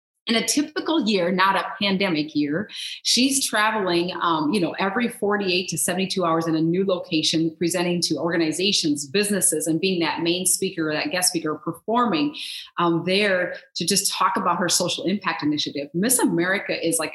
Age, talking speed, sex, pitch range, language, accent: 30-49, 170 wpm, female, 165-205 Hz, English, American